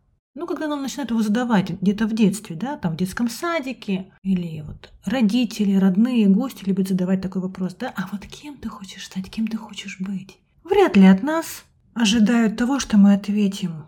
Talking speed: 185 wpm